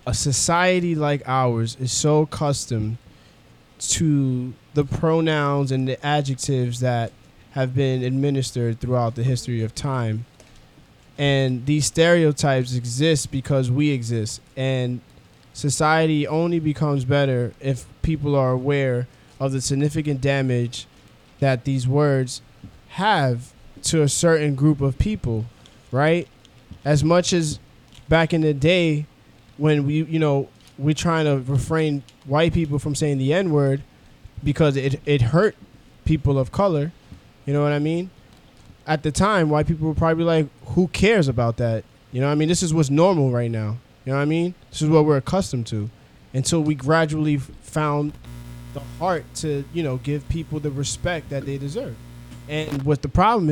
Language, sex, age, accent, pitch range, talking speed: English, male, 20-39, American, 125-155 Hz, 160 wpm